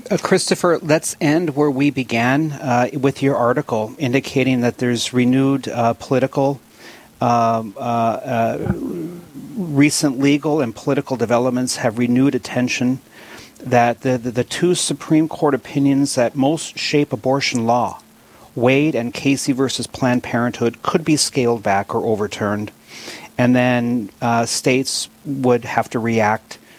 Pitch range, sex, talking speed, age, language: 120-140 Hz, male, 135 wpm, 40-59, English